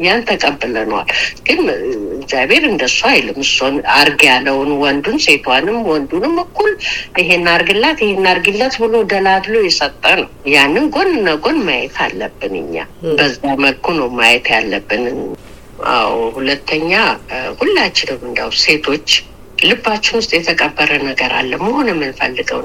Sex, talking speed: female, 110 wpm